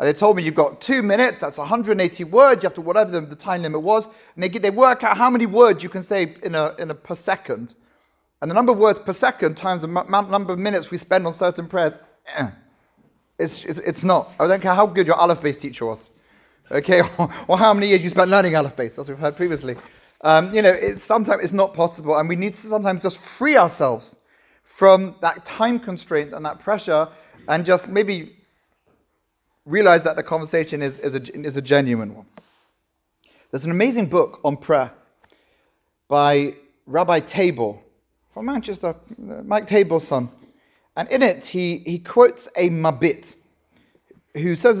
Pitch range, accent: 160-215 Hz, British